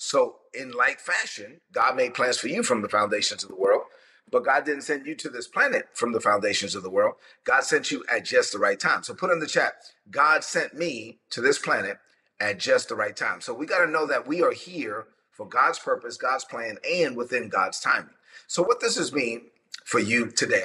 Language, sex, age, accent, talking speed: English, male, 30-49, American, 235 wpm